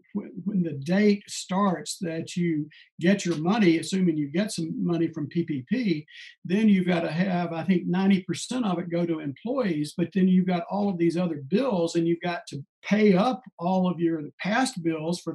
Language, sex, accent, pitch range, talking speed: English, male, American, 170-205 Hz, 195 wpm